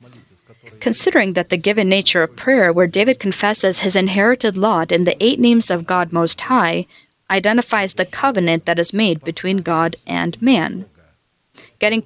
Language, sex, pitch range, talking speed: English, female, 170-220 Hz, 160 wpm